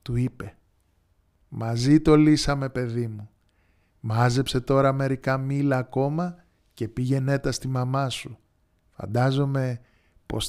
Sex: male